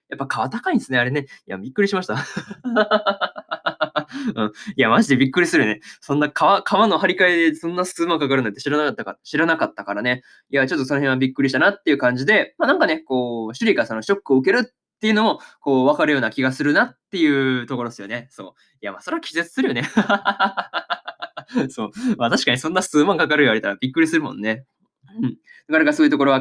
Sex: male